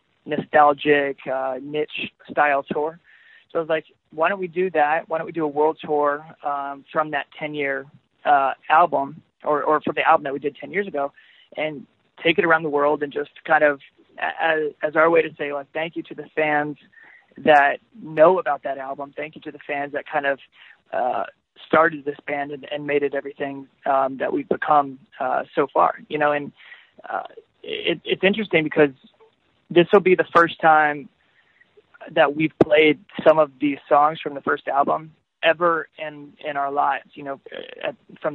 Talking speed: 190 wpm